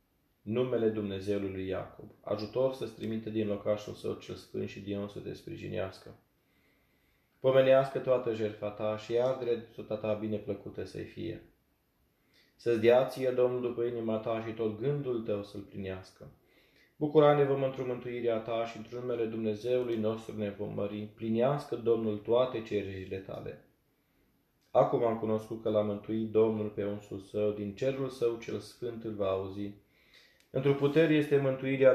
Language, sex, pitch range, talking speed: Romanian, male, 105-130 Hz, 155 wpm